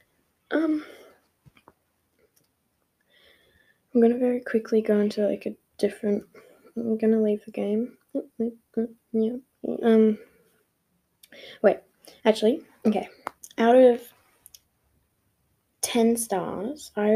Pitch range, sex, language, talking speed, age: 205-245 Hz, female, English, 85 wpm, 10-29